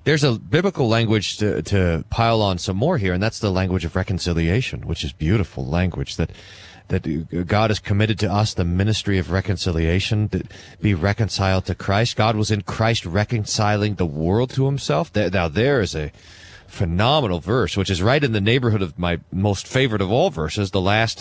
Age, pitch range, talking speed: 30-49, 95-120 Hz, 190 wpm